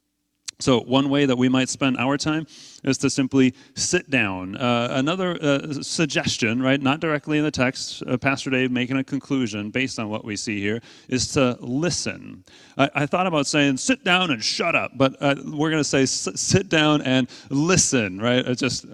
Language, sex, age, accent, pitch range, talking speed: English, male, 30-49, American, 125-145 Hz, 200 wpm